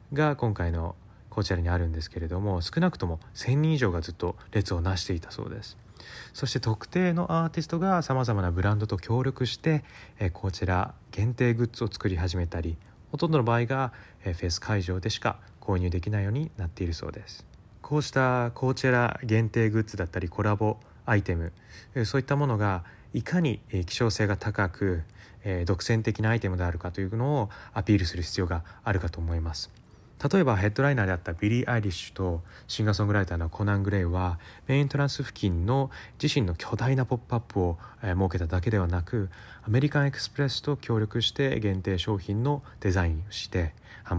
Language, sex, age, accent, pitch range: Japanese, male, 20-39, native, 90-120 Hz